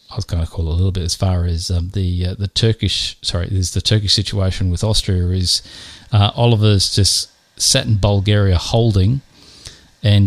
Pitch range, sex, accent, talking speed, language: 90-110 Hz, male, Australian, 195 wpm, English